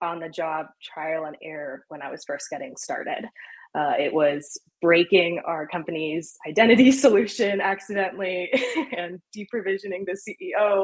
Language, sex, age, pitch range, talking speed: English, female, 20-39, 160-200 Hz, 140 wpm